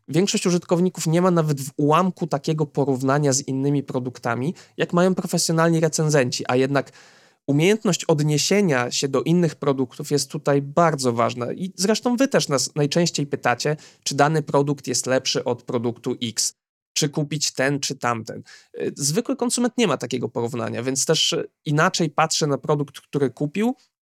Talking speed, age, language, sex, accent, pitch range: 155 wpm, 20-39, Polish, male, native, 130-175 Hz